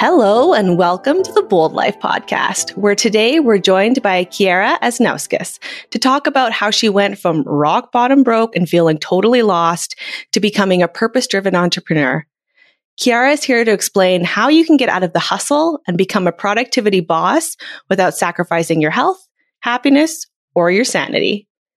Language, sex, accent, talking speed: English, female, American, 165 wpm